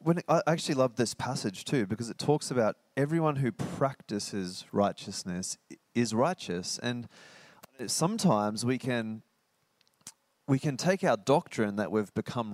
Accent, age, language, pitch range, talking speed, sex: Australian, 20-39, English, 105-135 Hz, 140 wpm, male